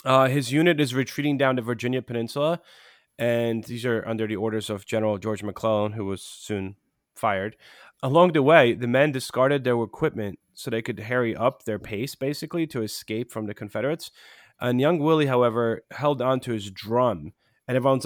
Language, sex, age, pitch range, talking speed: English, male, 30-49, 110-135 Hz, 185 wpm